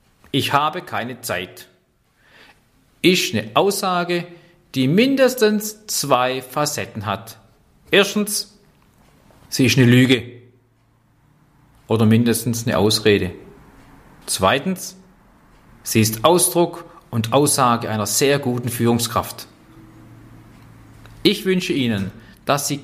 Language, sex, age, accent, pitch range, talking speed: German, male, 40-59, German, 115-150 Hz, 95 wpm